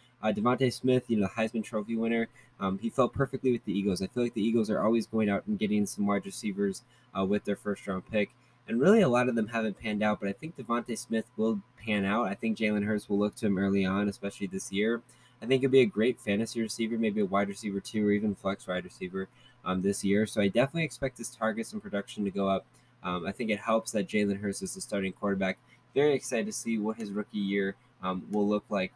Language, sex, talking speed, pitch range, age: English, male, 250 wpm, 100-125 Hz, 10-29